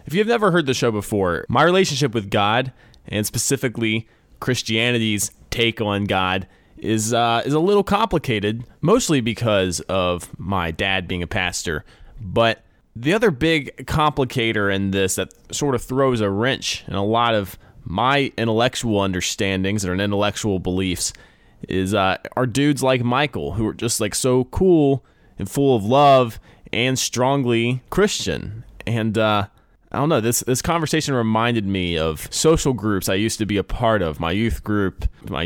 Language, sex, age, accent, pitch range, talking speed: English, male, 20-39, American, 95-125 Hz, 165 wpm